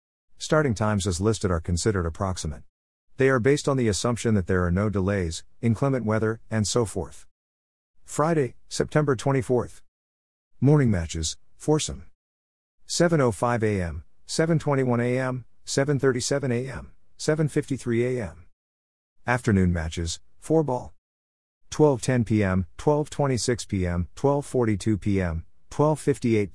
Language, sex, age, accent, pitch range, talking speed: English, male, 50-69, American, 85-125 Hz, 110 wpm